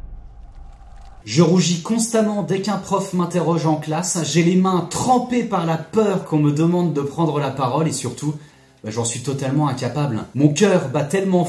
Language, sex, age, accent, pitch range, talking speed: French, male, 30-49, French, 135-175 Hz, 180 wpm